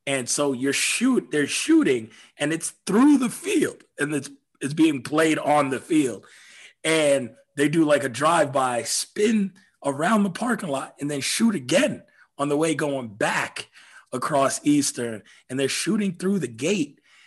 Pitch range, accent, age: 140-205 Hz, American, 30-49